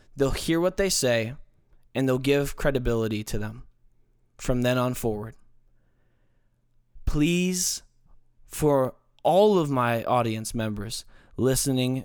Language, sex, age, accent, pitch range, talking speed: English, male, 20-39, American, 115-140 Hz, 115 wpm